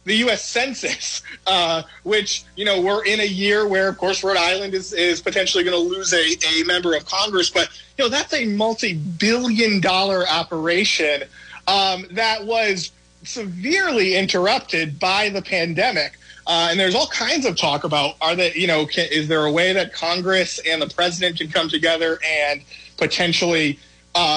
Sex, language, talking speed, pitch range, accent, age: male, English, 170 wpm, 160-195 Hz, American, 30-49